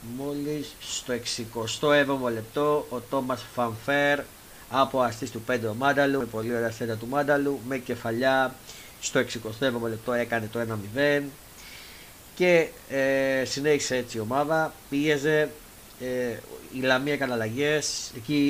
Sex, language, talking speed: male, Greek, 125 wpm